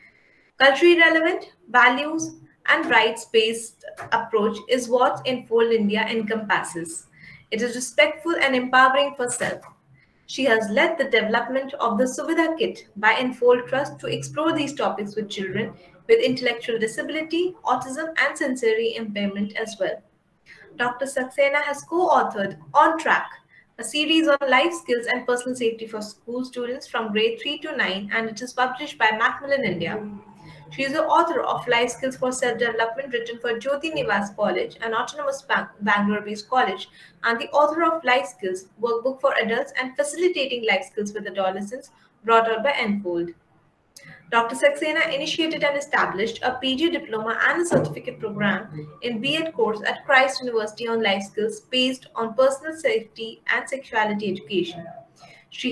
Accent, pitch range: Indian, 220-275 Hz